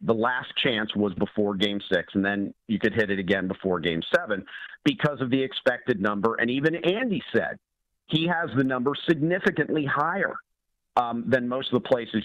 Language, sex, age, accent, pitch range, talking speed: English, male, 40-59, American, 110-150 Hz, 185 wpm